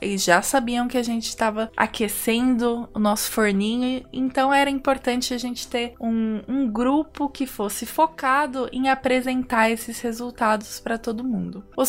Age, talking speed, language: 20-39, 155 wpm, Portuguese